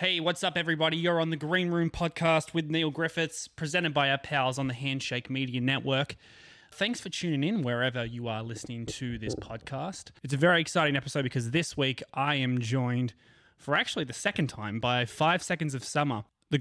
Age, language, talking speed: 20-39, English, 200 wpm